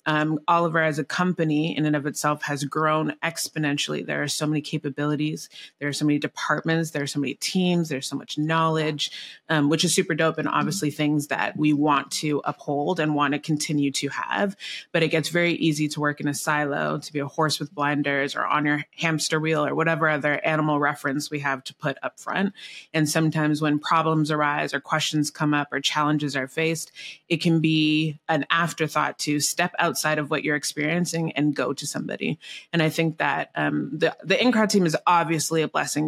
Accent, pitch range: American, 145-160 Hz